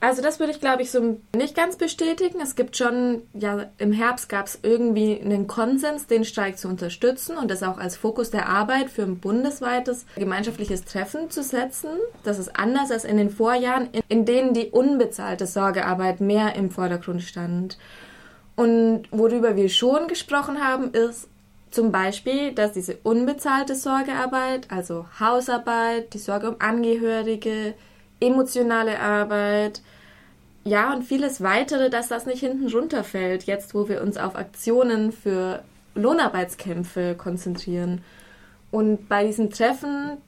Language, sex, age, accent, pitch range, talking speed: German, female, 20-39, German, 205-255 Hz, 145 wpm